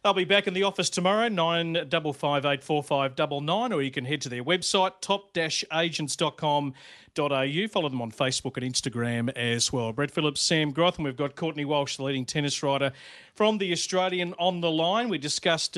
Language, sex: English, male